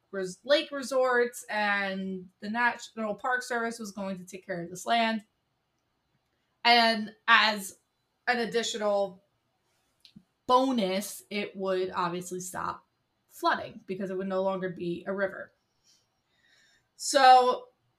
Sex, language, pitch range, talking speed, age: female, English, 195-235 Hz, 115 wpm, 20-39